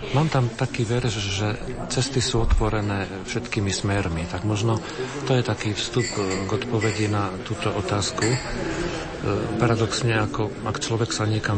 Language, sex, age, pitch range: Slovak, male, 40-59, 105-120 Hz